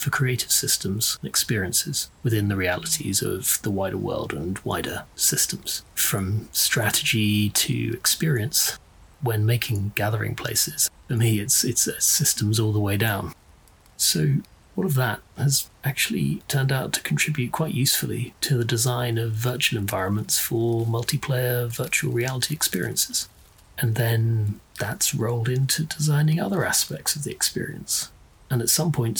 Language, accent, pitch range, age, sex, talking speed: English, British, 110-135 Hz, 30-49, male, 145 wpm